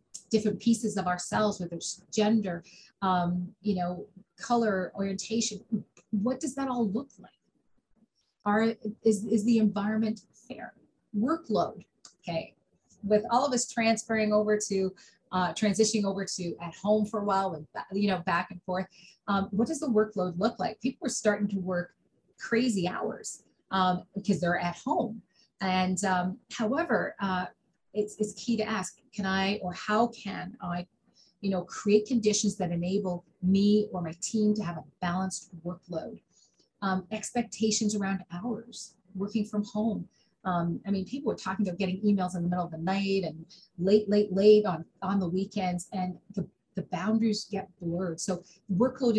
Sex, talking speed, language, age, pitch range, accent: female, 165 wpm, English, 30-49, 185-215 Hz, American